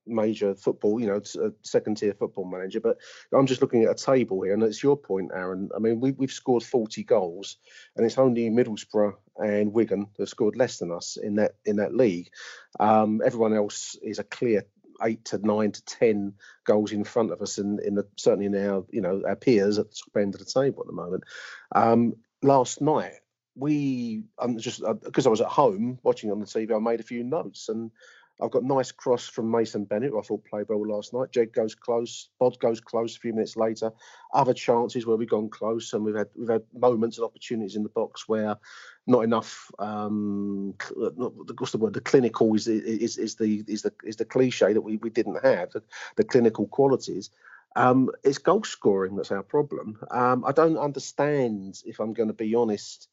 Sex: male